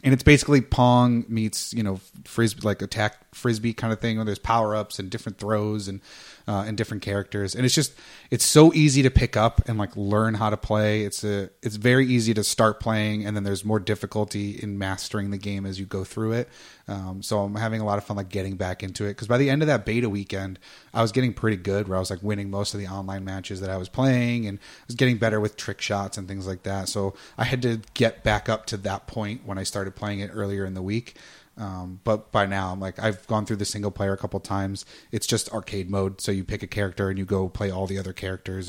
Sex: male